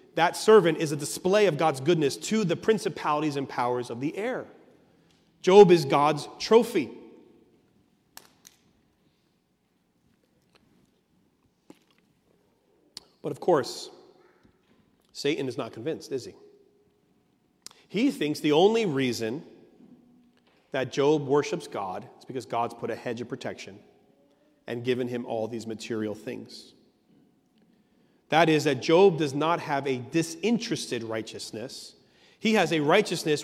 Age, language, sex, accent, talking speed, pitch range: 40-59, English, male, American, 120 wpm, 130-215 Hz